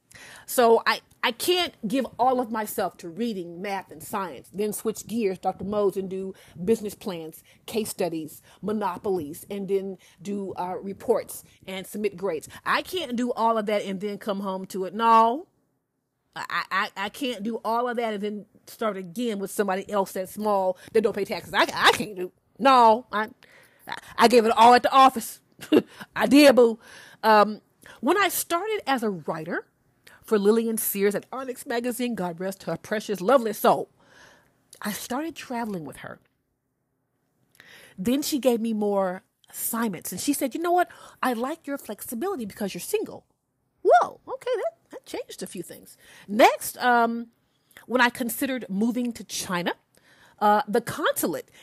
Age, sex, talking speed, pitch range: 40-59, female, 170 wpm, 195-245 Hz